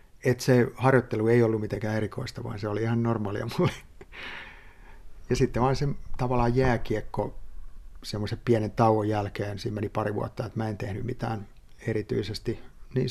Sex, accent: male, native